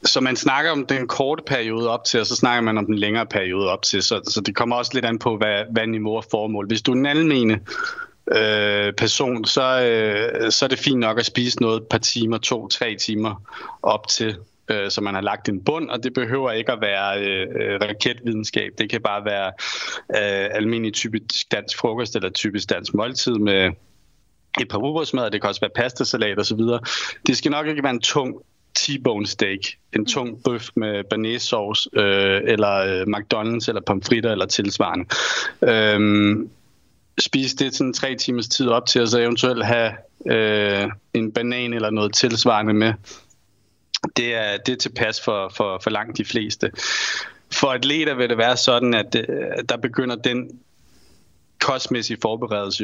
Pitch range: 105-125 Hz